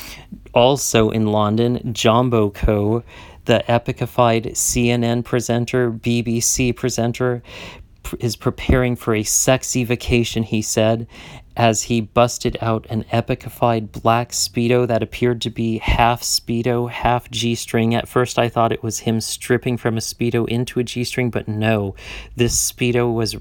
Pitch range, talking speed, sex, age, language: 110-120 Hz, 145 wpm, male, 40-59, English